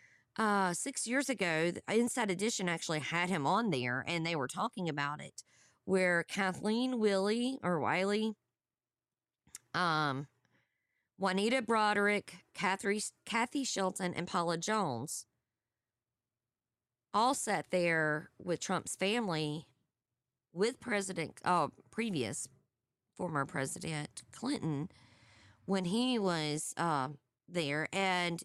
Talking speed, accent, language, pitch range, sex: 105 wpm, American, English, 155-215 Hz, female